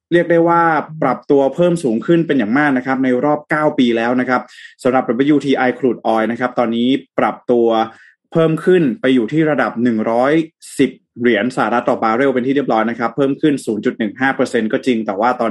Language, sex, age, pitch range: Thai, male, 20-39, 120-145 Hz